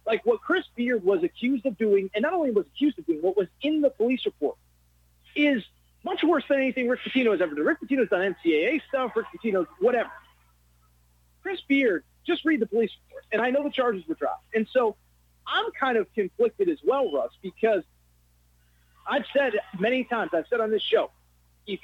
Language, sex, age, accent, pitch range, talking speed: English, male, 40-59, American, 185-295 Hz, 200 wpm